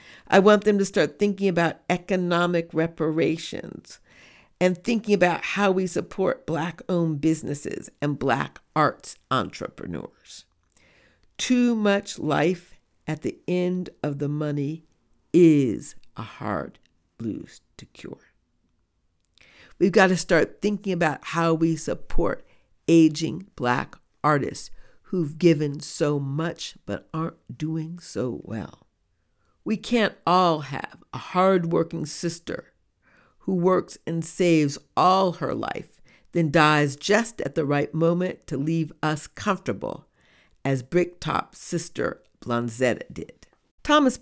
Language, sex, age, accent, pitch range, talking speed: English, female, 50-69, American, 145-185 Hz, 120 wpm